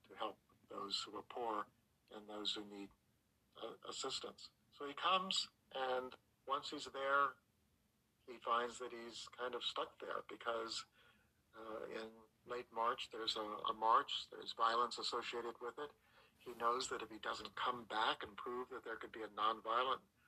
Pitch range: 110-130 Hz